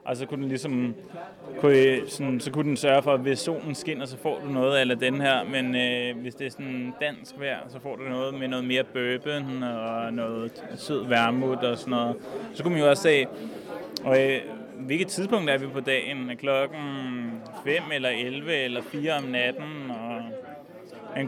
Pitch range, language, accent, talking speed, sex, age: 130-150 Hz, Danish, native, 195 wpm, male, 20-39